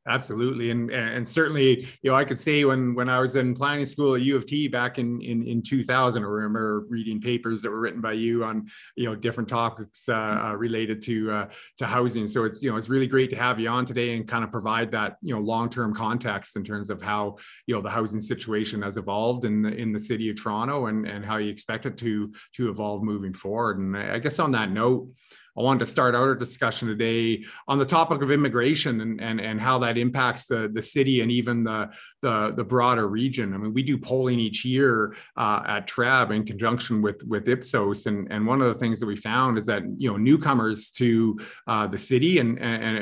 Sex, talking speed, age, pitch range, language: male, 230 wpm, 30-49, 110-125 Hz, English